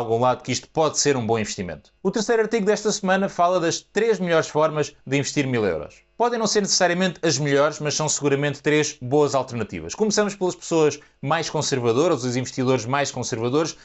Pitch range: 130-155 Hz